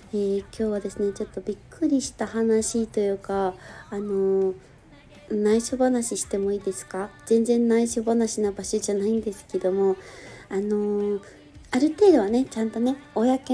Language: Japanese